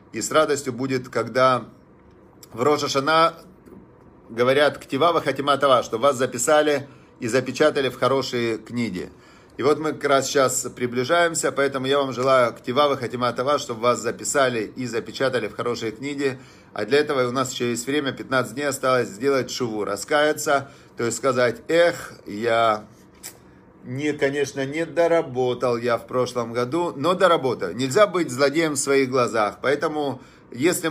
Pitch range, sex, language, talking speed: 125-150 Hz, male, Russian, 155 wpm